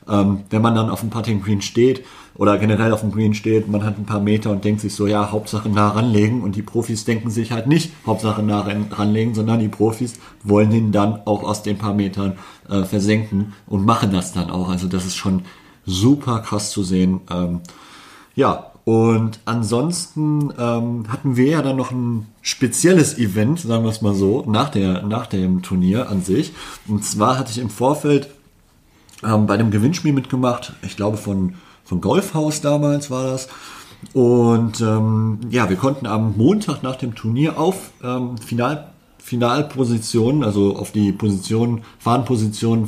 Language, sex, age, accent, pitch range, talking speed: German, male, 40-59, German, 100-120 Hz, 175 wpm